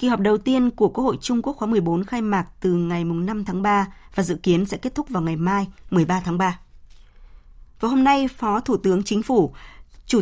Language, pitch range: Vietnamese, 180-230 Hz